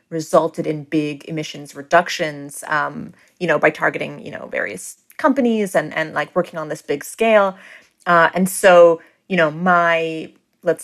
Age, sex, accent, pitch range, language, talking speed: 30-49, female, American, 165-210 Hz, English, 160 wpm